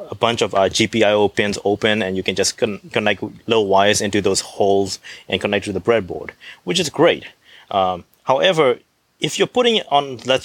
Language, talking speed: English, 195 wpm